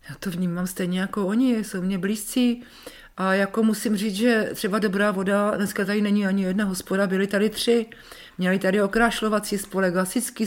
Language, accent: Czech, native